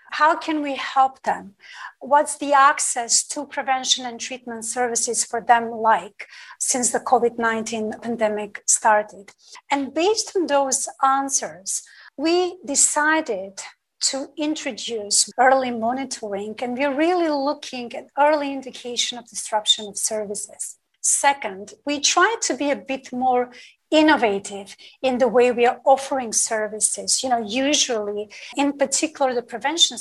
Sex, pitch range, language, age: female, 225-285 Hz, English, 40-59